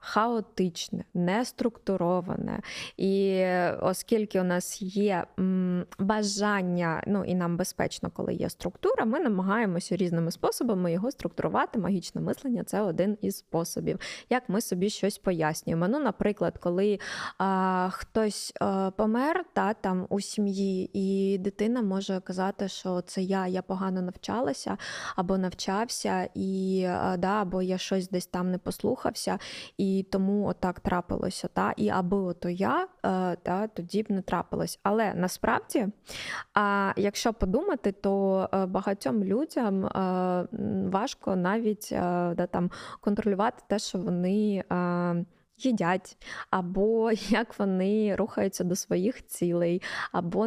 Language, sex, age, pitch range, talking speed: Ukrainian, female, 20-39, 185-210 Hz, 125 wpm